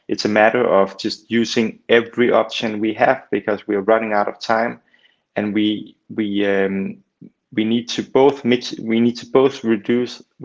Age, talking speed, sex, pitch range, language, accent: 30-49, 180 wpm, male, 100-115 Hz, English, Danish